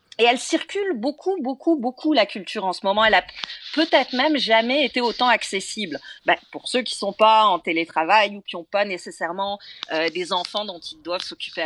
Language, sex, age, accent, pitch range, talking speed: French, female, 40-59, French, 205-290 Hz, 200 wpm